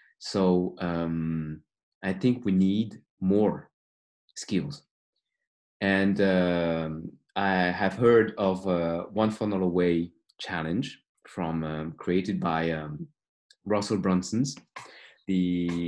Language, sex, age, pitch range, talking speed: English, male, 30-49, 85-110 Hz, 100 wpm